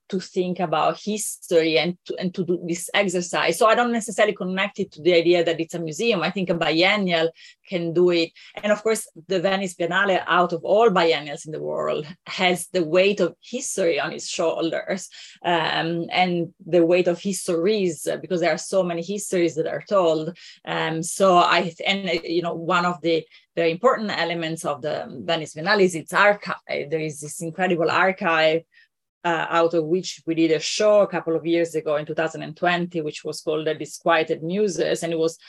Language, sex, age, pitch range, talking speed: English, female, 30-49, 165-190 Hz, 195 wpm